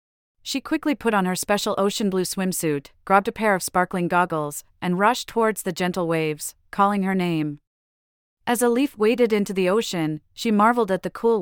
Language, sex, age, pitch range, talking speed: English, female, 30-49, 160-220 Hz, 190 wpm